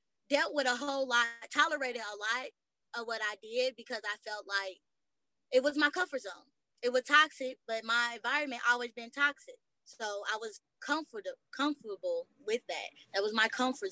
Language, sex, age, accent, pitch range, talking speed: English, female, 20-39, American, 210-275 Hz, 175 wpm